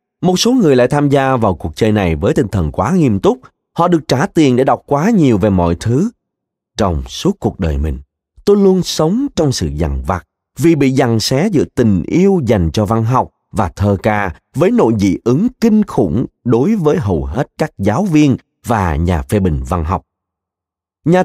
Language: Vietnamese